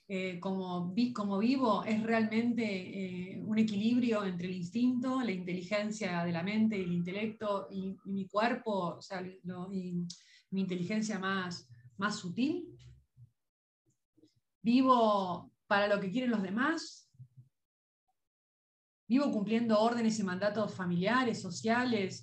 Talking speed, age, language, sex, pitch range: 115 wpm, 30-49, Spanish, female, 185-235 Hz